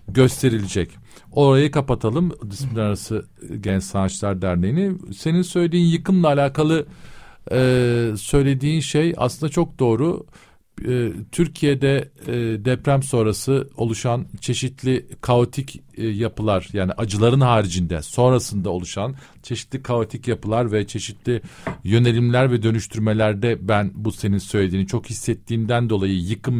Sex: male